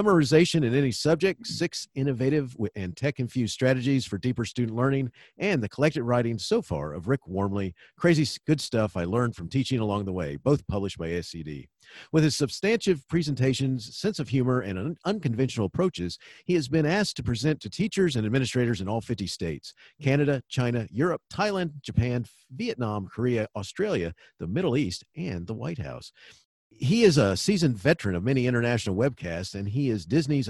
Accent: American